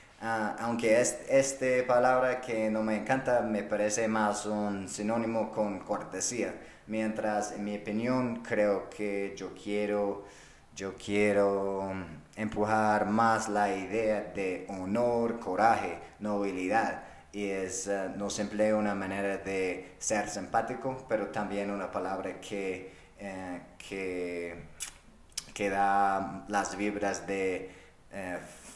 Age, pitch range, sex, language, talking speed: 30-49, 95-110 Hz, male, English, 120 wpm